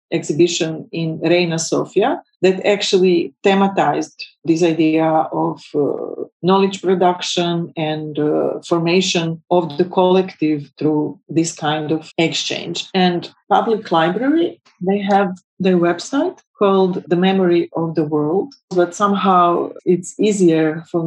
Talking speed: 120 wpm